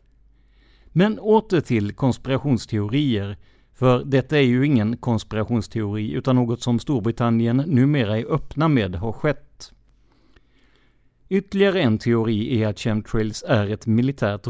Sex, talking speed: male, 120 wpm